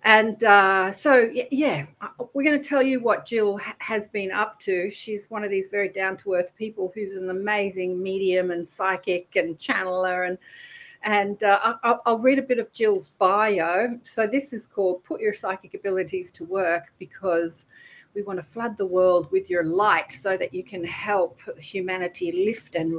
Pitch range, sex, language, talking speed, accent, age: 185-260 Hz, female, English, 190 wpm, Australian, 40-59